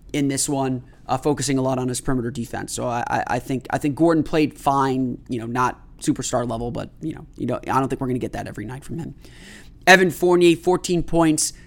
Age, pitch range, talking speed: 20-39, 130-155 Hz, 240 wpm